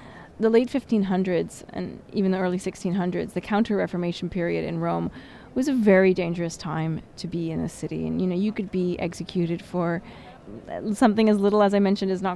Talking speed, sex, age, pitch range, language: 190 wpm, female, 20-39, 180-225 Hz, English